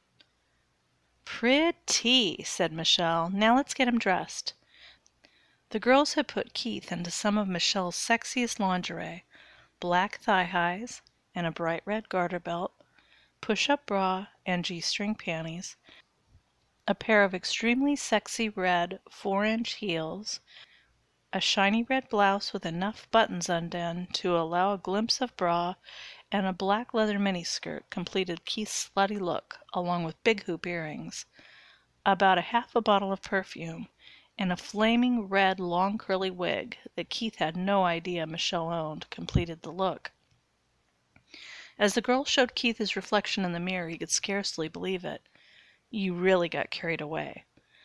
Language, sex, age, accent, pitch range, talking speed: English, female, 30-49, American, 175-220 Hz, 140 wpm